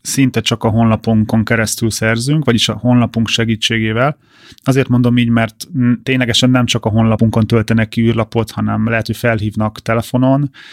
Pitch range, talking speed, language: 115-130 Hz, 150 wpm, Hungarian